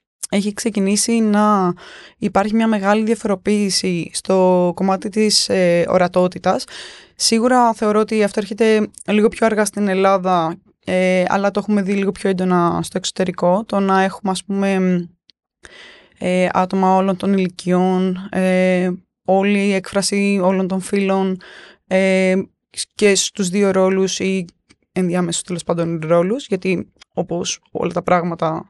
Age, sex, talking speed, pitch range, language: 20-39, female, 135 wpm, 180-210 Hz, Greek